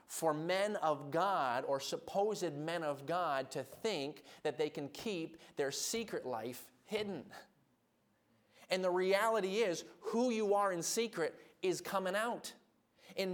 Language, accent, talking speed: English, American, 145 wpm